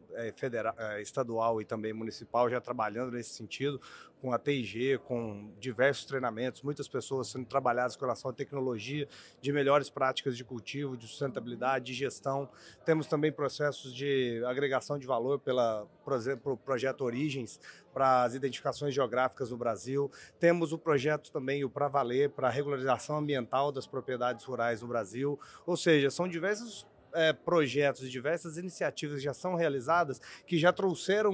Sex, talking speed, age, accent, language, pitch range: male, 155 wpm, 30-49, Brazilian, Portuguese, 125-155 Hz